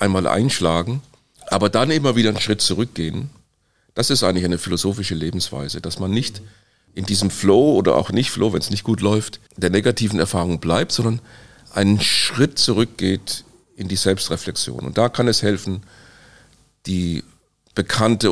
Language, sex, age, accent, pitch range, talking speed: German, male, 40-59, German, 95-120 Hz, 160 wpm